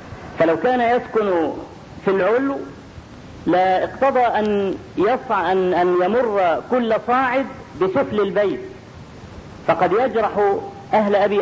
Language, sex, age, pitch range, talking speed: Arabic, female, 50-69, 190-240 Hz, 105 wpm